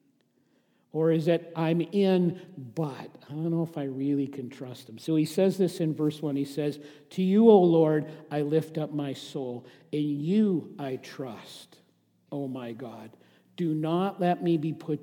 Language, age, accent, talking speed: English, 50-69, American, 185 wpm